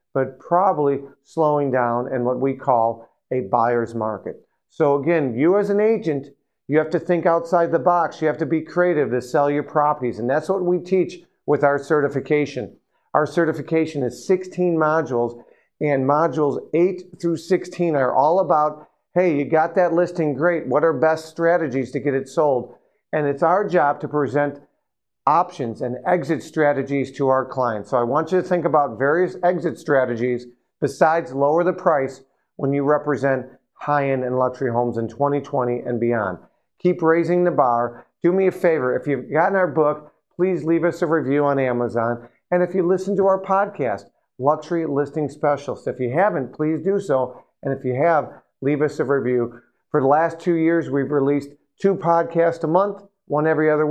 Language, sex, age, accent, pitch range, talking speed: English, male, 50-69, American, 135-170 Hz, 185 wpm